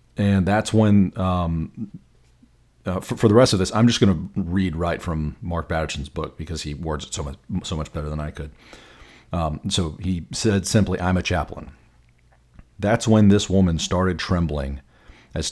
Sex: male